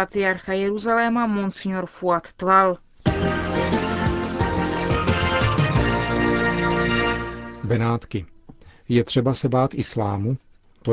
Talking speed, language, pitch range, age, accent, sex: 65 wpm, Czech, 110-130 Hz, 40-59, native, male